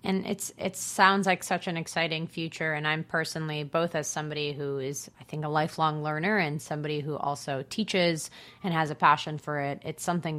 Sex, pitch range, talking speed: female, 145-170 Hz, 200 wpm